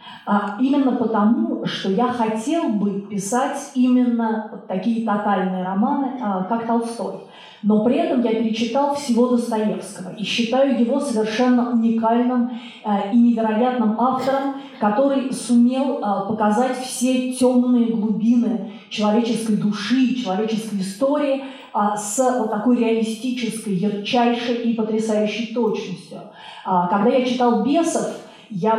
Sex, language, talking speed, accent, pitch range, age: female, Russian, 105 wpm, native, 210-245 Hz, 20-39